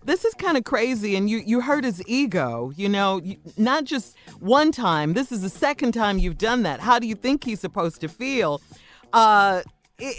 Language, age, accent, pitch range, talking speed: English, 40-59, American, 185-255 Hz, 205 wpm